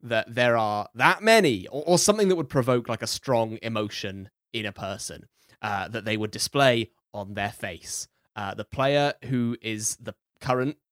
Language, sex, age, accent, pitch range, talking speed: English, male, 20-39, British, 105-130 Hz, 180 wpm